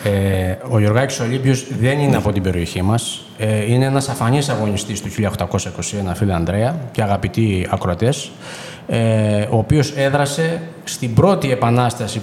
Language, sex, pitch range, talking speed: Greek, male, 110-145 Hz, 130 wpm